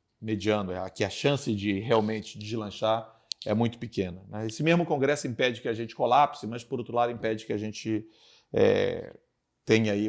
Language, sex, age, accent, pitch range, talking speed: Portuguese, male, 40-59, Brazilian, 100-125 Hz, 180 wpm